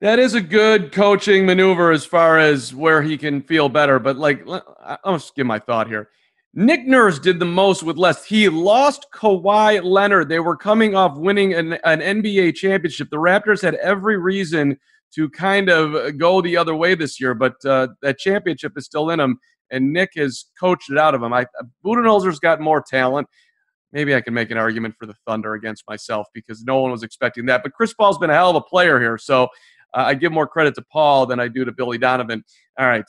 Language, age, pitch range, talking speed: English, 40-59, 135-185 Hz, 215 wpm